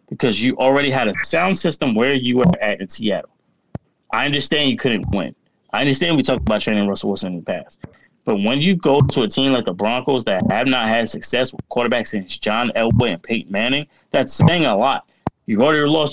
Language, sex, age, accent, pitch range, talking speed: English, male, 20-39, American, 110-140 Hz, 220 wpm